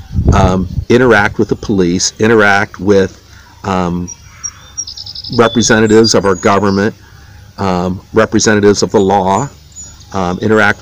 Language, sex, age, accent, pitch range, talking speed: English, male, 50-69, American, 95-110 Hz, 105 wpm